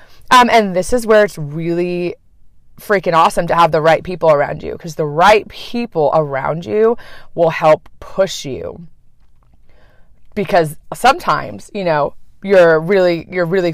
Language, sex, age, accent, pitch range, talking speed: English, female, 20-39, American, 155-200 Hz, 155 wpm